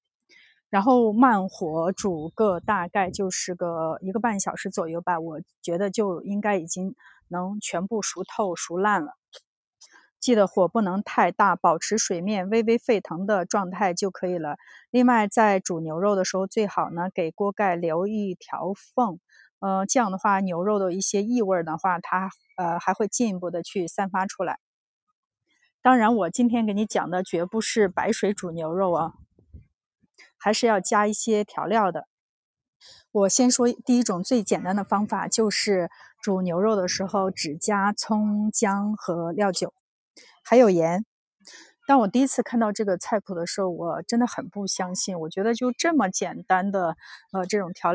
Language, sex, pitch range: Chinese, female, 180-220 Hz